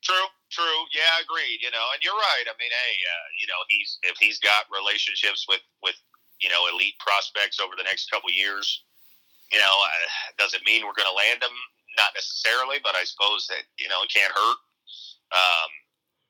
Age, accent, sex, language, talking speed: 40-59, American, male, English, 200 wpm